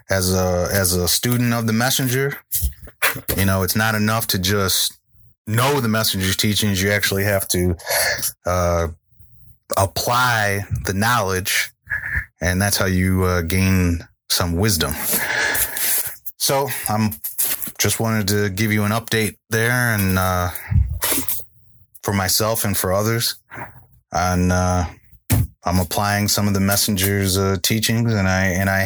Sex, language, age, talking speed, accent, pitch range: male, English, 30-49, 135 wpm, American, 95-115 Hz